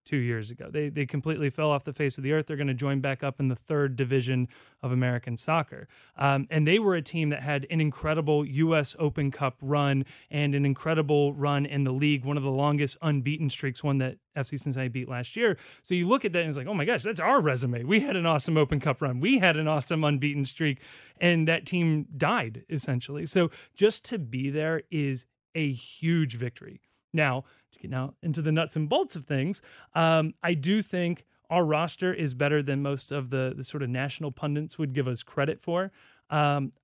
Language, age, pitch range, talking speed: English, 30-49, 140-165 Hz, 220 wpm